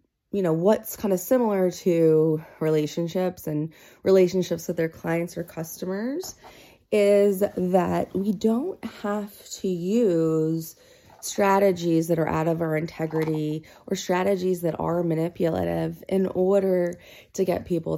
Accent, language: American, English